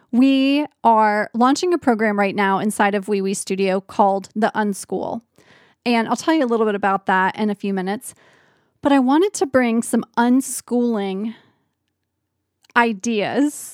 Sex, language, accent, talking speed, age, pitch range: female, English, American, 155 wpm, 30-49, 210-265 Hz